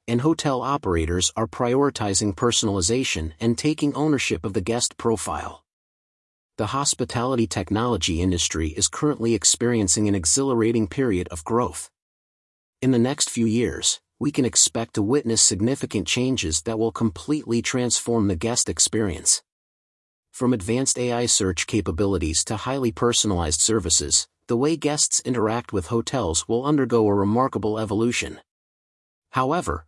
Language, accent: English, American